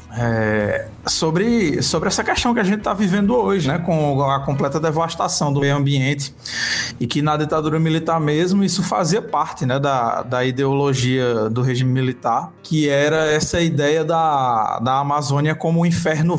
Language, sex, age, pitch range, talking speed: Portuguese, male, 20-39, 135-160 Hz, 160 wpm